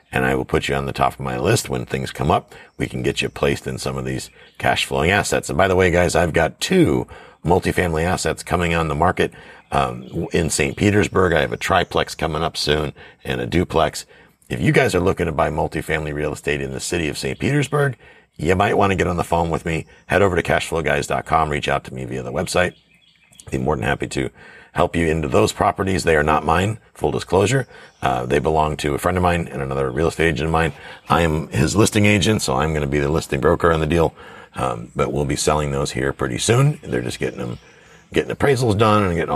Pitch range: 70-90 Hz